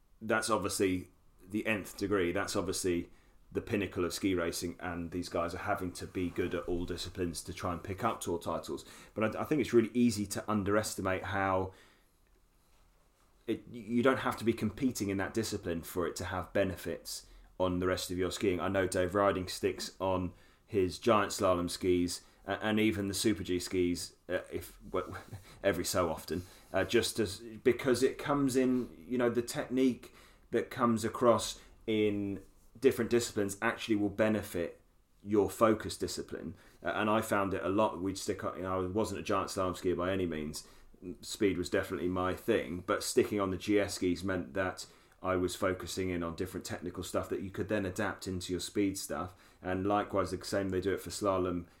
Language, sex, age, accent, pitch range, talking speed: English, male, 30-49, British, 90-110 Hz, 190 wpm